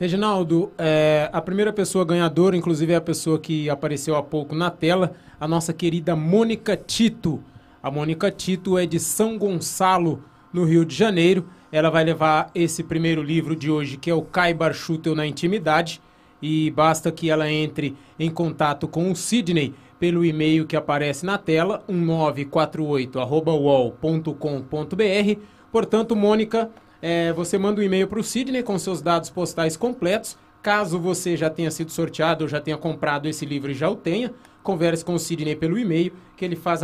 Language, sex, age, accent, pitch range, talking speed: Portuguese, male, 20-39, Brazilian, 155-185 Hz, 170 wpm